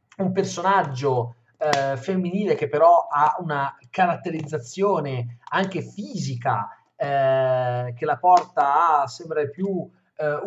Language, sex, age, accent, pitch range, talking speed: Italian, male, 40-59, native, 125-180 Hz, 110 wpm